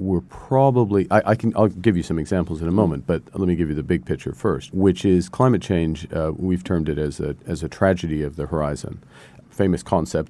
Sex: male